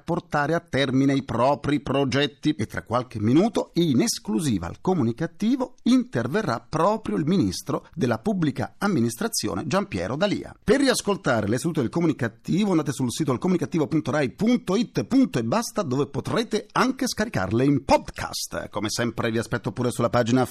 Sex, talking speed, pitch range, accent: male, 145 wpm, 100-150 Hz, native